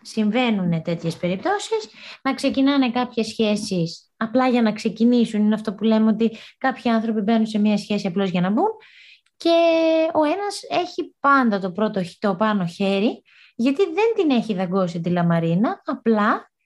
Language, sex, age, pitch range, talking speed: Greek, female, 20-39, 195-255 Hz, 160 wpm